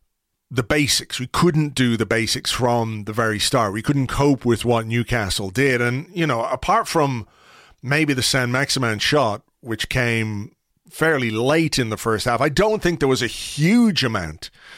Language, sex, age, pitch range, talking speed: English, male, 30-49, 115-145 Hz, 180 wpm